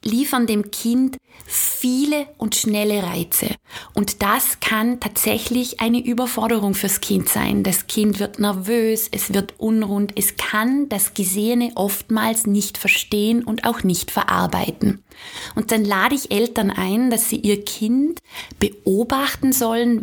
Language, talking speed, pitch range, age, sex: German, 140 wpm, 195-235 Hz, 20-39, female